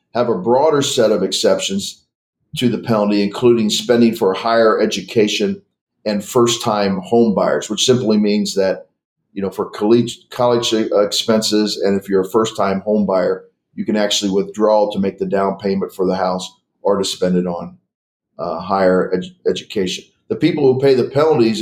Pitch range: 100-120 Hz